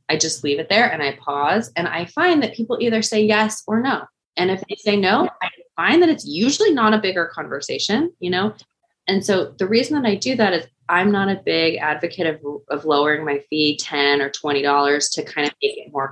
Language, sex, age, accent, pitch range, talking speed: English, female, 20-39, American, 140-215 Hz, 230 wpm